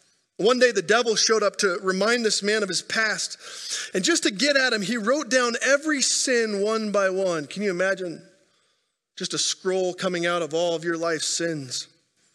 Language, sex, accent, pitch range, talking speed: English, male, American, 170-230 Hz, 200 wpm